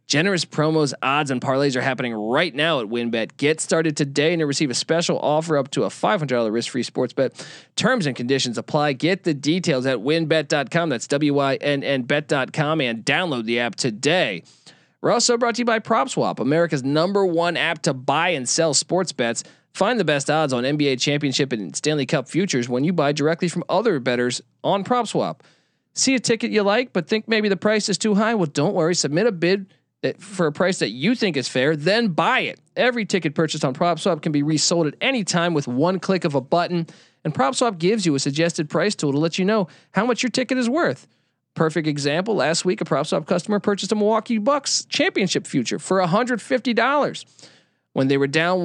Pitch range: 145-205 Hz